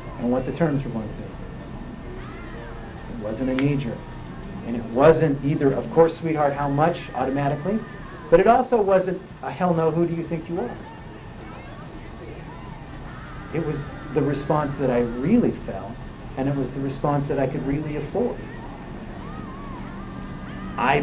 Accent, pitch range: American, 125-155 Hz